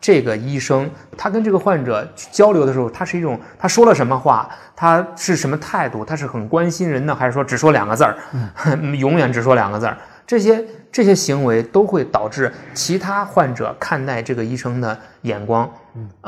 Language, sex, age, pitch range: Chinese, male, 20-39, 120-170 Hz